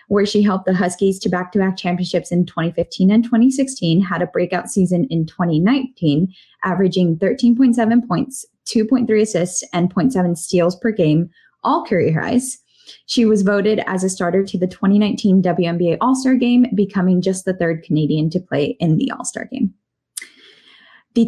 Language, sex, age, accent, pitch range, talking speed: English, female, 10-29, American, 180-220 Hz, 160 wpm